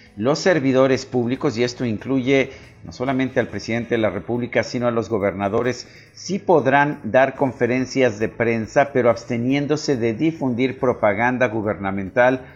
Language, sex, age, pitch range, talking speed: Spanish, male, 50-69, 110-130 Hz, 140 wpm